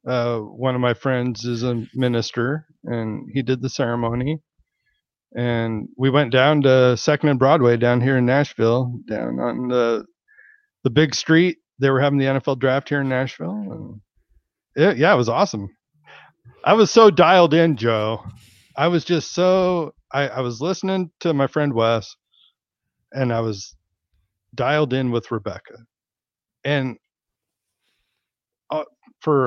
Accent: American